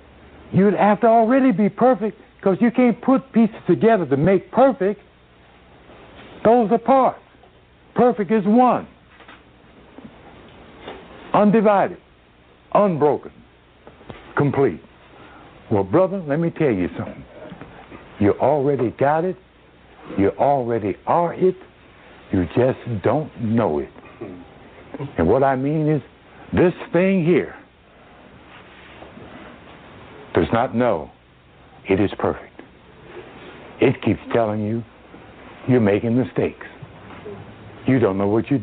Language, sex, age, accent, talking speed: English, male, 60-79, American, 110 wpm